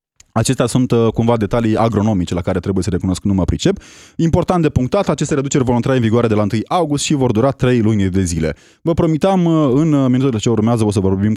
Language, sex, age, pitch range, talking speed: Romanian, male, 20-39, 100-165 Hz, 220 wpm